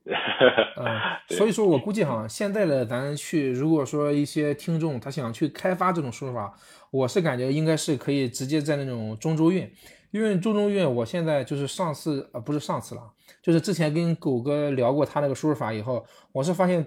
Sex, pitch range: male, 135-170 Hz